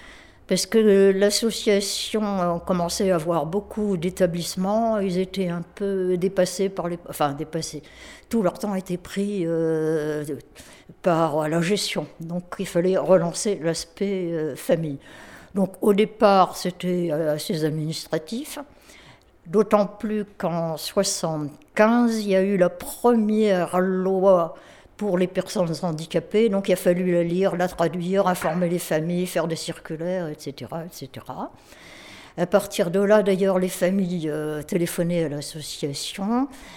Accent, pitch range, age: French, 170-205 Hz, 60-79